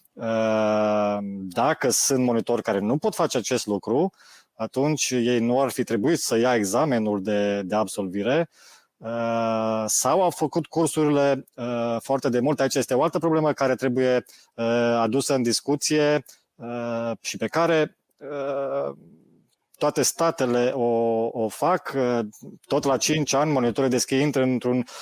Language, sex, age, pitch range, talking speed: Romanian, male, 20-39, 115-145 Hz, 130 wpm